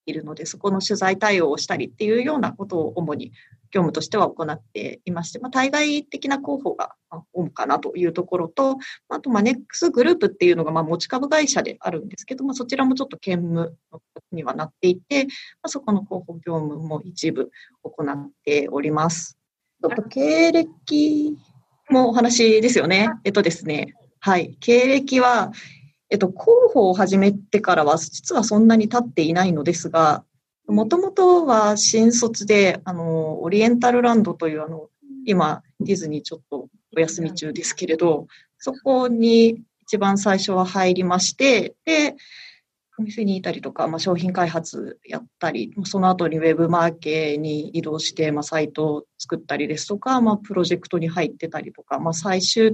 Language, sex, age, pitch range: Japanese, female, 30-49, 160-235 Hz